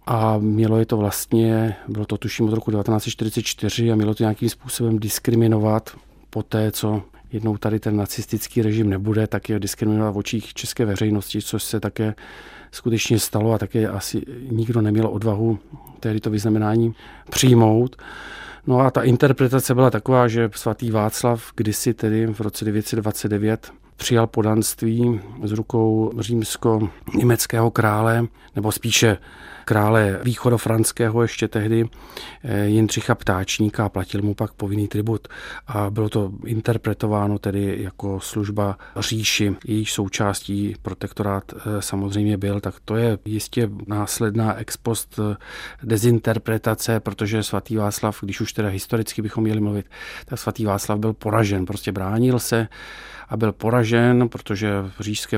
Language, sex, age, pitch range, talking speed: Czech, male, 40-59, 105-115 Hz, 140 wpm